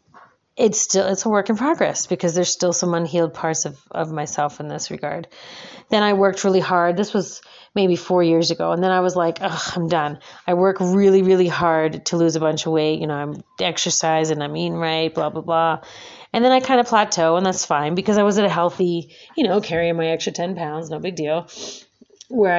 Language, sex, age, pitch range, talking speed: English, female, 30-49, 170-210 Hz, 225 wpm